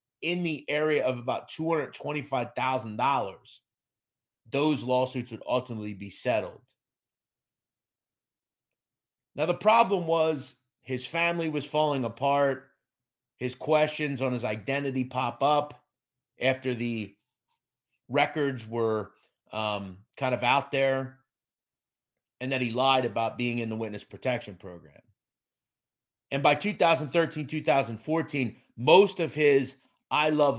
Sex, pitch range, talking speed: male, 120-150 Hz, 110 wpm